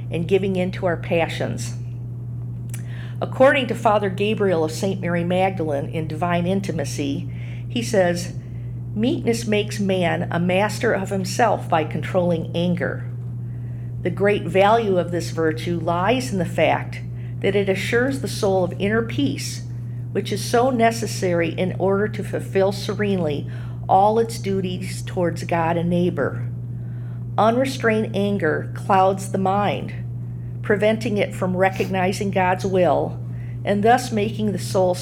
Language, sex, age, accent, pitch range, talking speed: English, female, 50-69, American, 120-180 Hz, 135 wpm